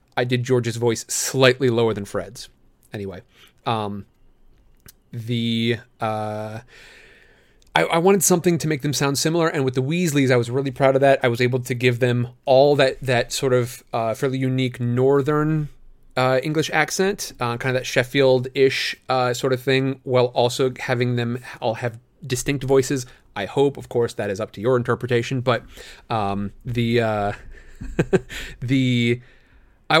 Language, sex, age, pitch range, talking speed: English, male, 30-49, 120-140 Hz, 165 wpm